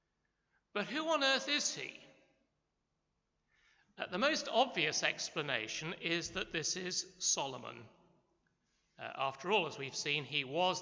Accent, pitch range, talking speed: British, 150-215 Hz, 135 wpm